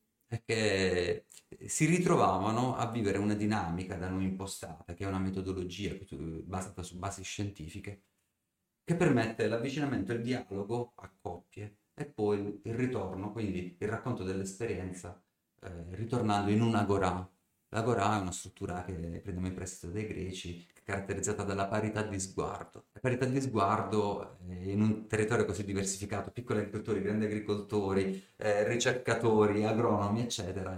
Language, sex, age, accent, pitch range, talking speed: Italian, male, 30-49, native, 95-115 Hz, 140 wpm